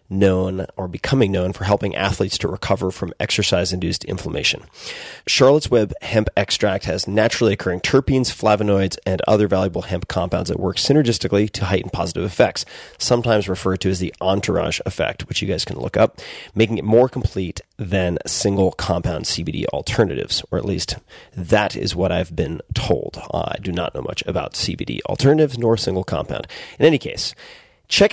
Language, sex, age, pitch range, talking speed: English, male, 30-49, 95-115 Hz, 175 wpm